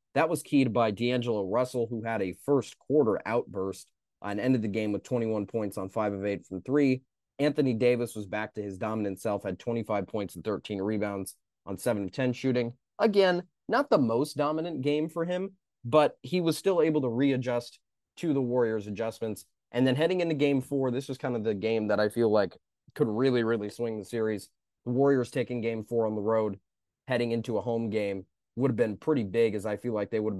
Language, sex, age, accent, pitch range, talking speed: English, male, 20-39, American, 105-130 Hz, 215 wpm